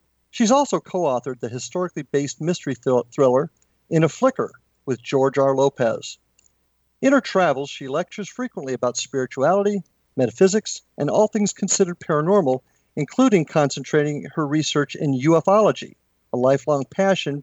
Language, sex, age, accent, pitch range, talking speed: English, male, 50-69, American, 130-190 Hz, 125 wpm